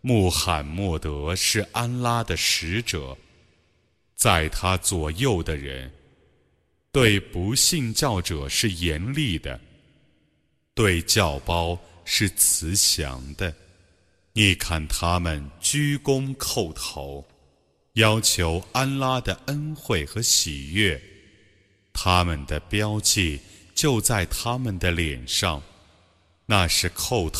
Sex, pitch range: male, 80-115 Hz